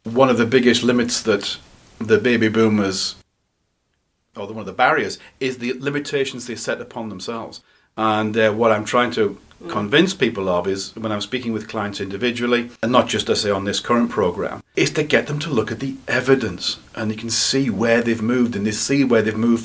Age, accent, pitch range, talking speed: 40-59, British, 110-135 Hz, 210 wpm